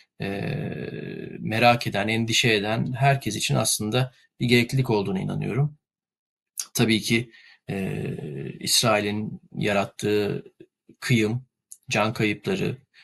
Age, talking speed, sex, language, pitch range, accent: 40-59, 85 wpm, male, Turkish, 110-130 Hz, native